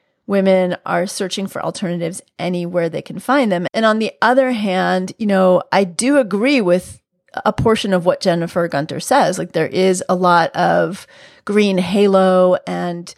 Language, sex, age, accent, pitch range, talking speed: English, female, 30-49, American, 180-220 Hz, 170 wpm